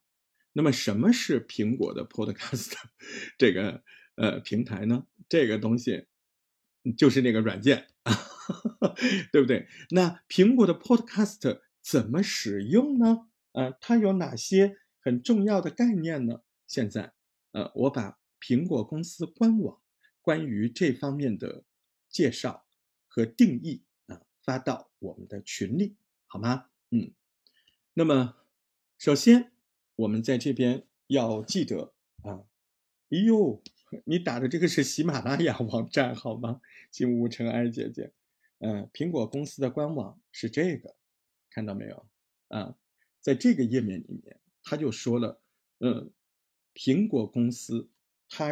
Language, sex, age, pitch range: Chinese, male, 50-69, 115-190 Hz